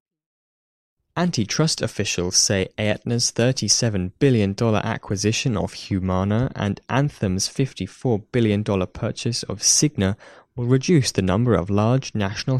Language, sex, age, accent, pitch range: Chinese, male, 20-39, British, 100-130 Hz